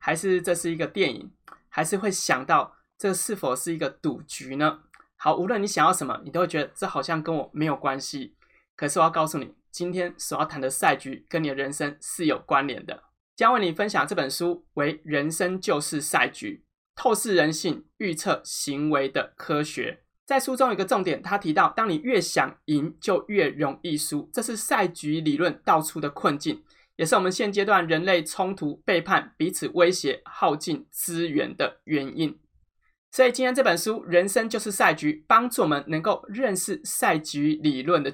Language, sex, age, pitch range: Chinese, male, 20-39, 150-195 Hz